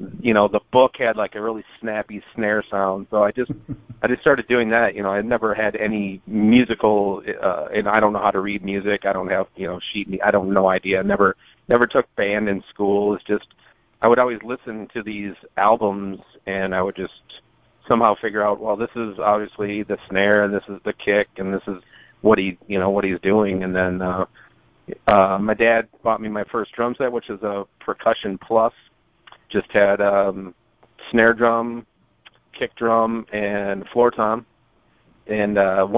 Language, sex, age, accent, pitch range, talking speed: English, male, 40-59, American, 95-110 Hz, 200 wpm